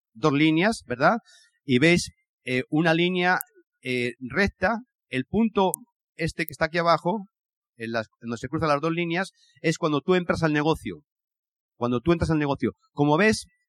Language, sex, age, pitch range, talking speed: Spanish, male, 40-59, 140-210 Hz, 170 wpm